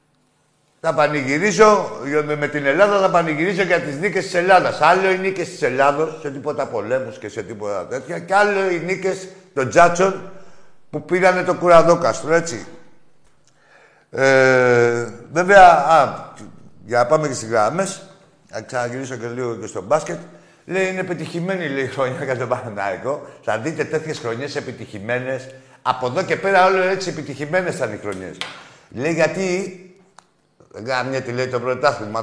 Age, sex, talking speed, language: 60-79, male, 155 wpm, Greek